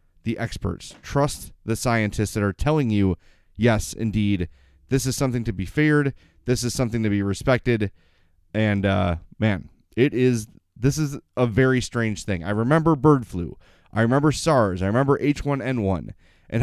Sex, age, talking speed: male, 30-49, 160 wpm